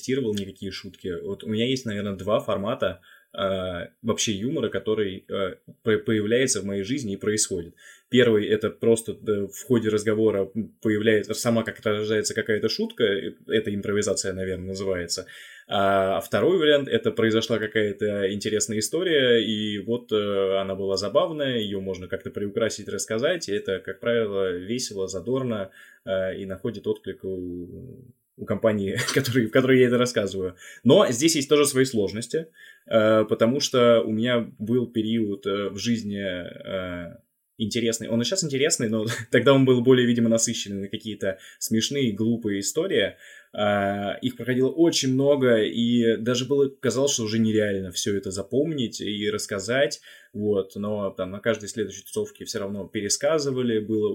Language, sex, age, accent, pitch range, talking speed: Russian, male, 20-39, native, 100-120 Hz, 145 wpm